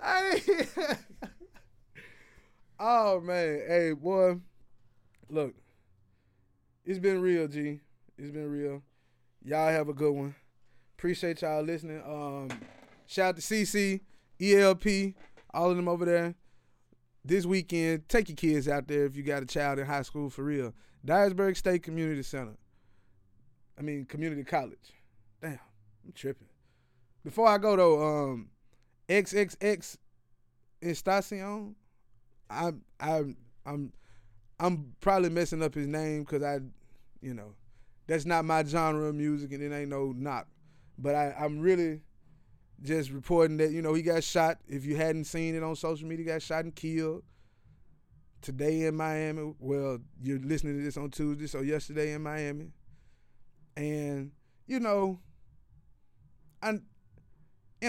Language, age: English, 20-39